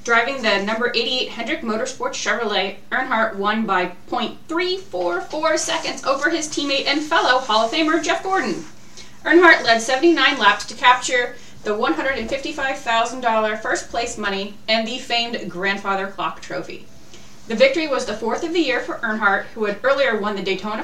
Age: 30-49